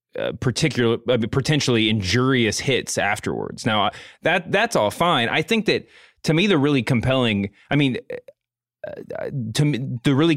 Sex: male